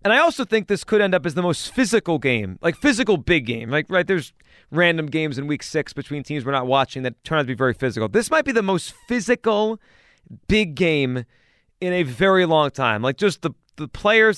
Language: English